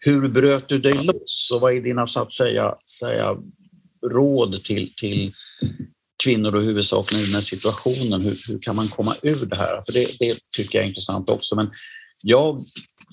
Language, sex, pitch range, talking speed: English, male, 105-140 Hz, 180 wpm